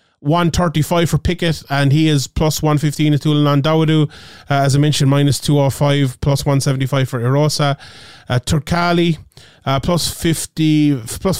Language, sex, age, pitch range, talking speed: English, male, 30-49, 135-165 Hz, 170 wpm